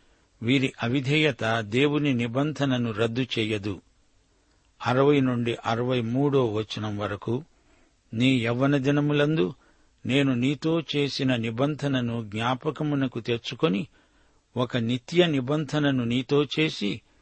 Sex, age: male, 60-79